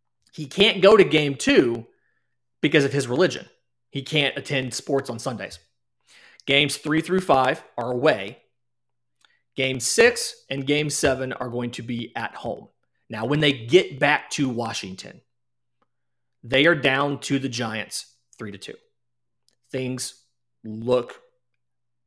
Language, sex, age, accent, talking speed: English, male, 30-49, American, 140 wpm